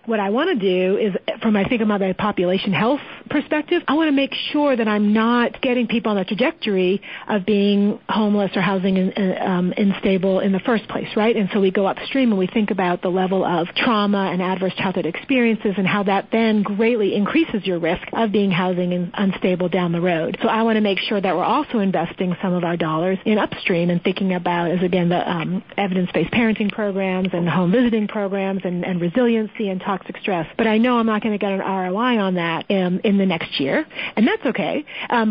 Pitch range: 185-225 Hz